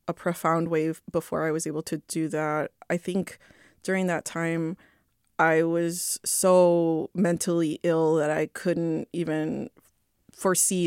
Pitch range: 160-185 Hz